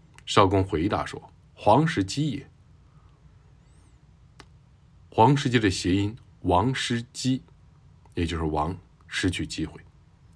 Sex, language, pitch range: male, Chinese, 90-125 Hz